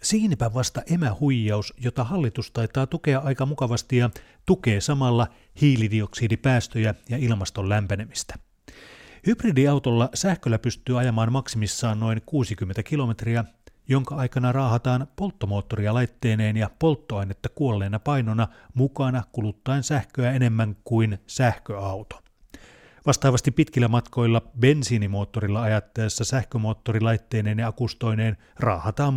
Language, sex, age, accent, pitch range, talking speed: Finnish, male, 30-49, native, 110-130 Hz, 100 wpm